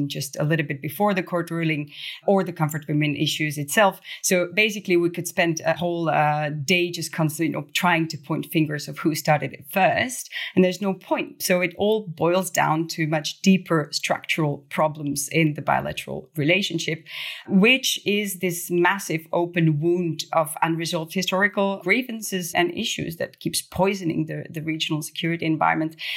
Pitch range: 155-180 Hz